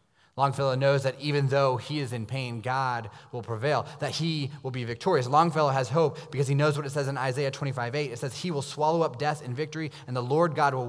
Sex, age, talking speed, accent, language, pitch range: male, 20-39, 235 wpm, American, English, 120-150 Hz